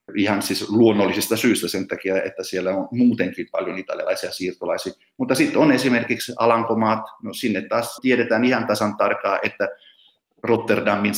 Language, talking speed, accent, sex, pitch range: Finnish, 145 wpm, native, male, 105-120 Hz